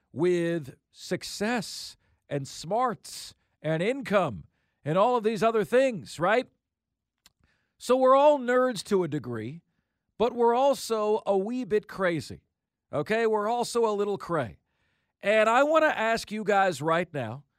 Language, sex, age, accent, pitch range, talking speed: English, male, 40-59, American, 165-220 Hz, 145 wpm